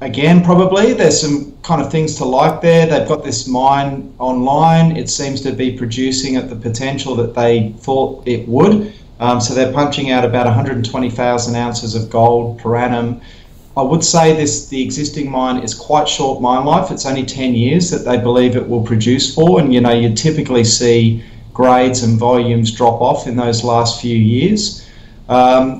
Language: English